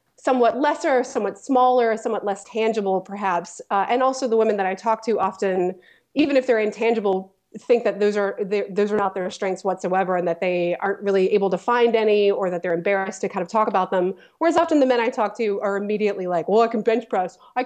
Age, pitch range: 30-49, 195-255 Hz